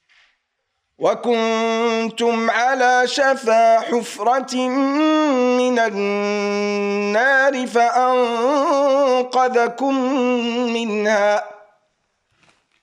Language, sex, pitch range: German, male, 230-280 Hz